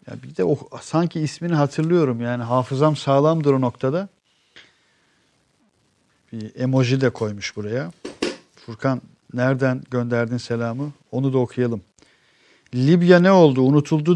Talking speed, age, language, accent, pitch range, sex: 120 wpm, 50-69, Turkish, native, 115-145 Hz, male